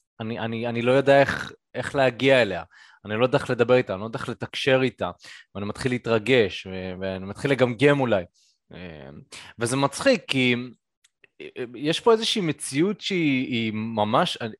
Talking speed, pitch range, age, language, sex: 155 wpm, 120-175 Hz, 20-39, Hebrew, male